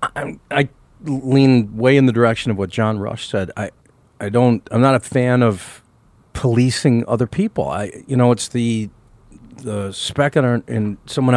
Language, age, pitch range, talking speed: English, 40-59, 110-130 Hz, 175 wpm